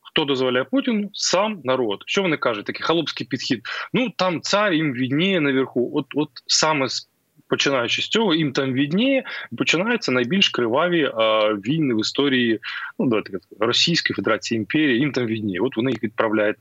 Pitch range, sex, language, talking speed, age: 115-155 Hz, male, Ukrainian, 165 wpm, 20-39